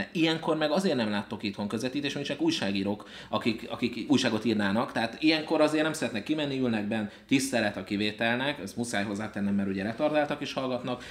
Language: Hungarian